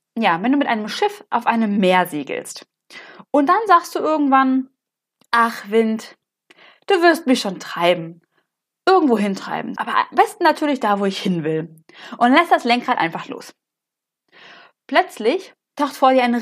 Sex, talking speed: female, 160 wpm